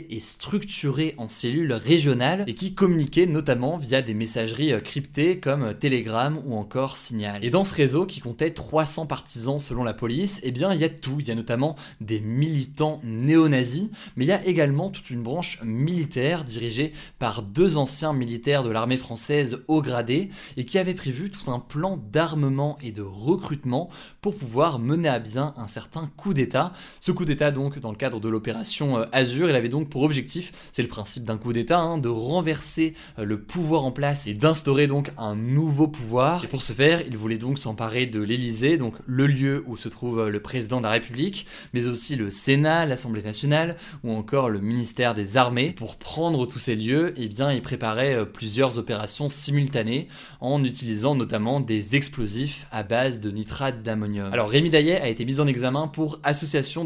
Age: 20-39